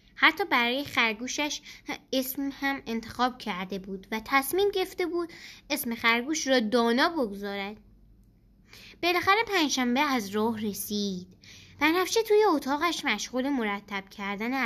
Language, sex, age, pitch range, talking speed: Persian, female, 10-29, 215-325 Hz, 120 wpm